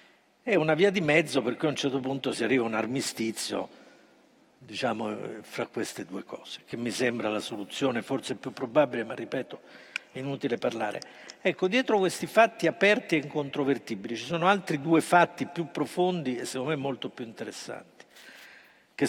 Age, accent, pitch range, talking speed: 50-69, native, 130-175 Hz, 170 wpm